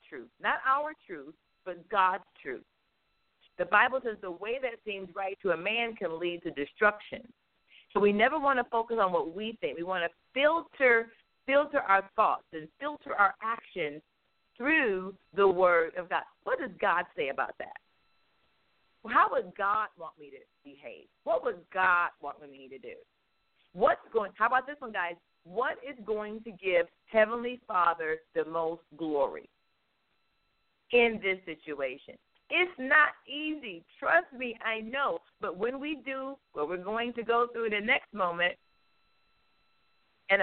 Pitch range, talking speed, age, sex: 180-260 Hz, 165 wpm, 50-69, female